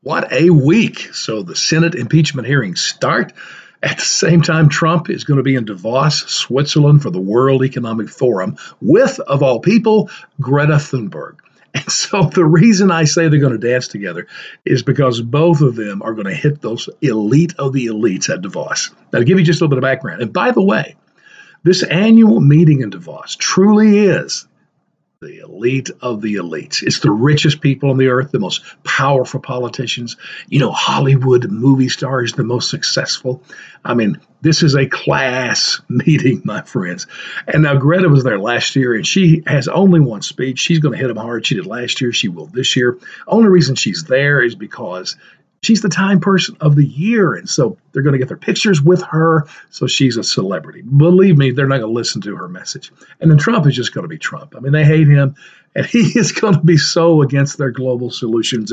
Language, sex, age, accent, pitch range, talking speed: English, male, 50-69, American, 130-165 Hz, 205 wpm